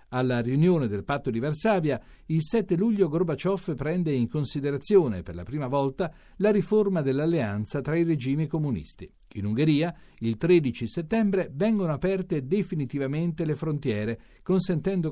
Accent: native